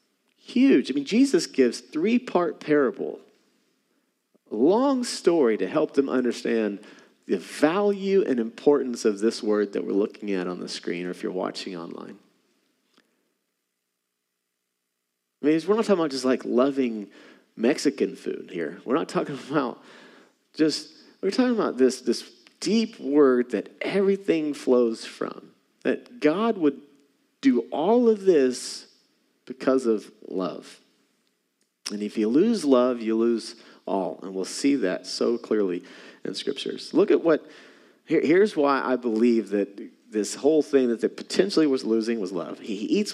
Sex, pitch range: male, 105-165 Hz